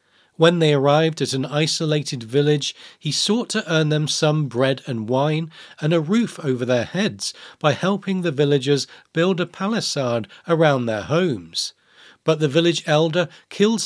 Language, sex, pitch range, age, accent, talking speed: English, male, 145-190 Hz, 40-59, British, 160 wpm